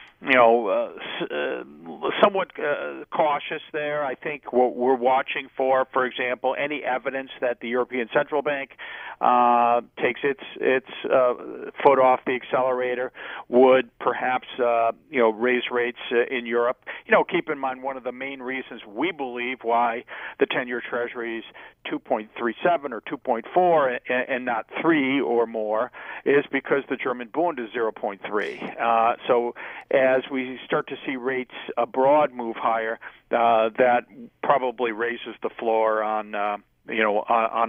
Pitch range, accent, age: 120-140 Hz, American, 50-69